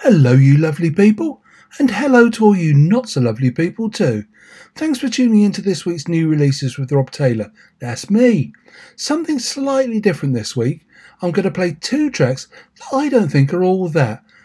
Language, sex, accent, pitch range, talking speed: English, male, British, 140-220 Hz, 190 wpm